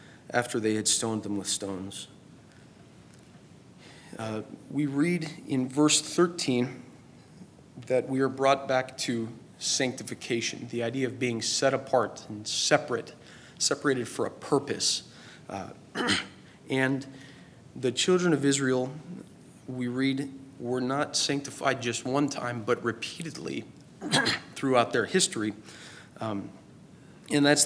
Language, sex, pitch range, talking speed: English, male, 110-135 Hz, 115 wpm